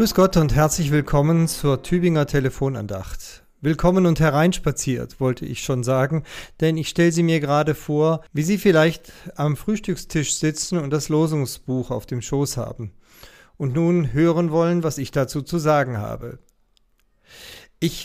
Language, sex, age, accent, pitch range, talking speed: German, male, 40-59, German, 140-175 Hz, 155 wpm